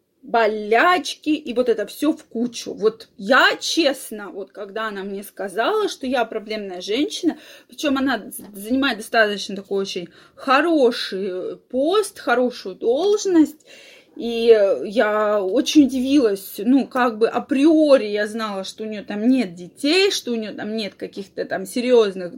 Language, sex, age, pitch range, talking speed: Russian, female, 20-39, 230-330 Hz, 140 wpm